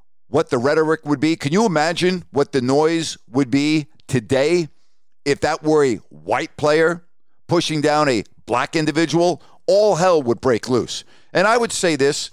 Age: 50-69